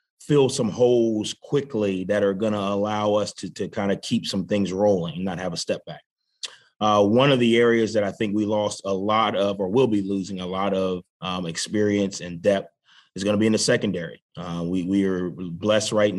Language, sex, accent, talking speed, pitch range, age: English, male, American, 225 wpm, 95-105 Hz, 30-49